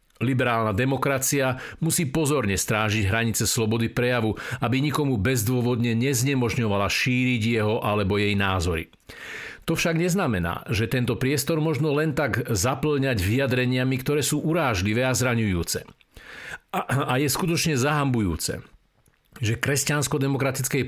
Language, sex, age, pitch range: Slovak, male, 50-69, 105-135 Hz